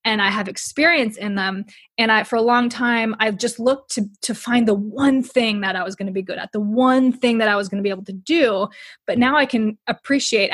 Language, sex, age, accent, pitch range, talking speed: English, female, 20-39, American, 205-245 Hz, 260 wpm